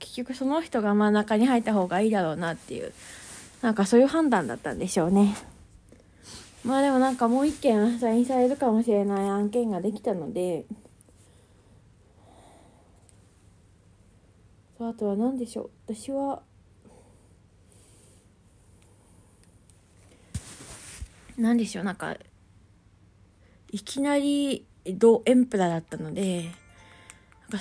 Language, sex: Japanese, female